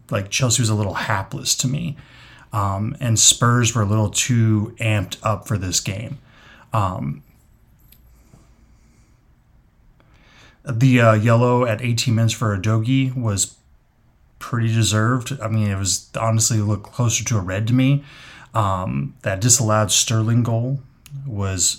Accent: American